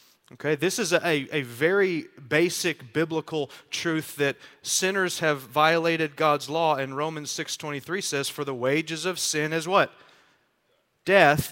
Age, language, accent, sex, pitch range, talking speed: 30-49, English, American, male, 145-175 Hz, 140 wpm